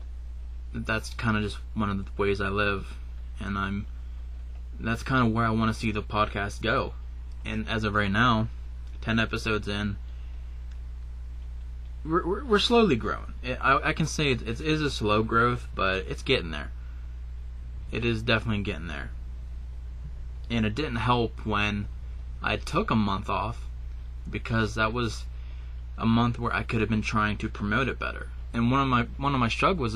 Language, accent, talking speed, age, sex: English, American, 170 wpm, 20-39, male